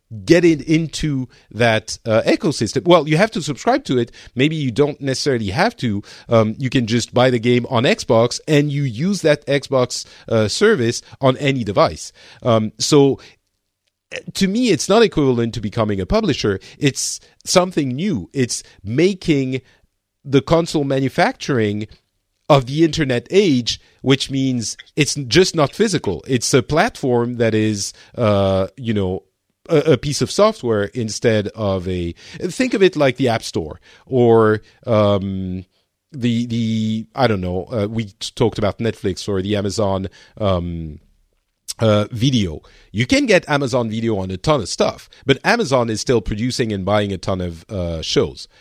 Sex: male